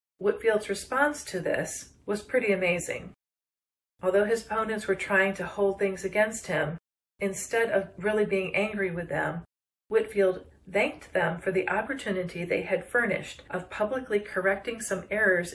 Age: 40-59